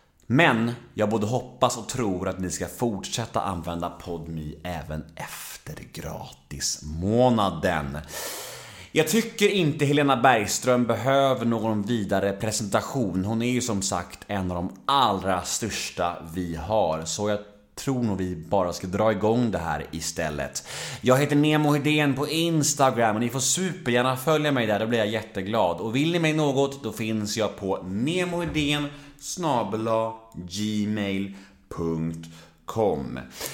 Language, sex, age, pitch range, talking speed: Swedish, male, 30-49, 90-140 Hz, 140 wpm